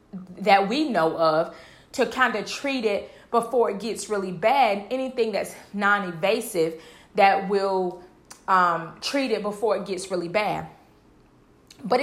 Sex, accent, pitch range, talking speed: female, American, 195-245 Hz, 135 wpm